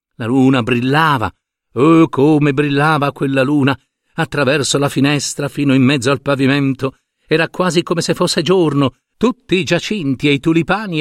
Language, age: Italian, 50-69